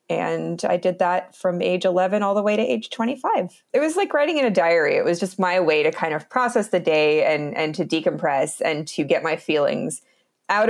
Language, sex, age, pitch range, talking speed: English, female, 20-39, 155-230 Hz, 230 wpm